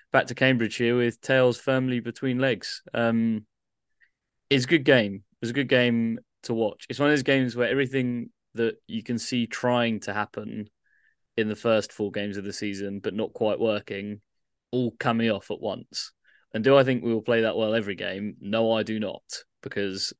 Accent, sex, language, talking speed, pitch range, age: British, male, English, 200 wpm, 100-120 Hz, 20-39